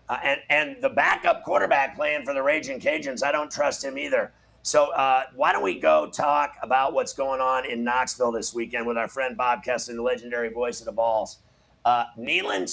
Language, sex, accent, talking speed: English, male, American, 205 wpm